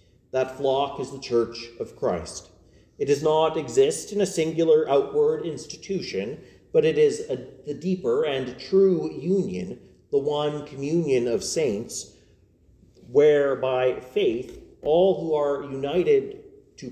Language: English